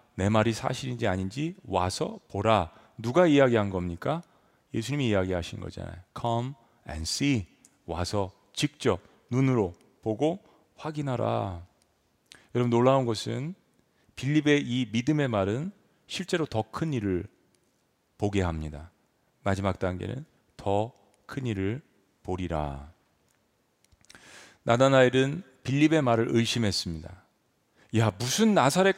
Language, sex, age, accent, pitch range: Korean, male, 40-59, native, 105-165 Hz